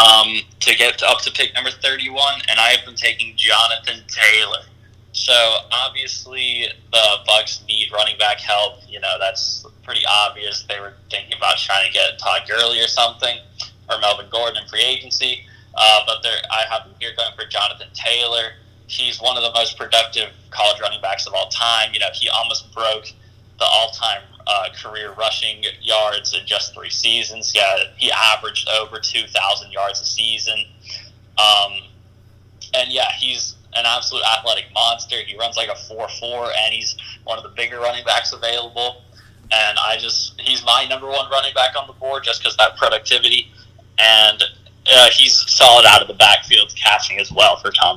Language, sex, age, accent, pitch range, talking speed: English, male, 20-39, American, 105-115 Hz, 180 wpm